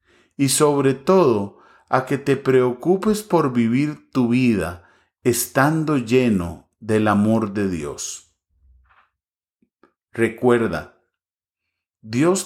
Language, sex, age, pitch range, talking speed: English, male, 40-59, 105-135 Hz, 90 wpm